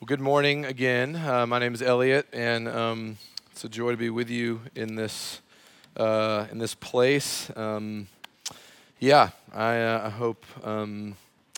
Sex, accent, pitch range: male, American, 115-140 Hz